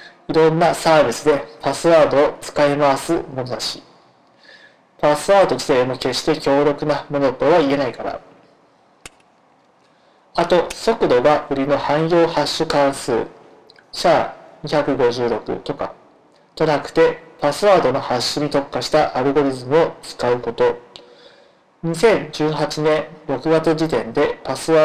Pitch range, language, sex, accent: 140-165 Hz, Japanese, male, native